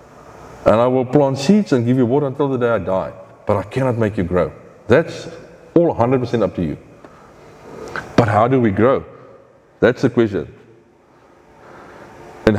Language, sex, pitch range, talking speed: English, male, 100-135 Hz, 165 wpm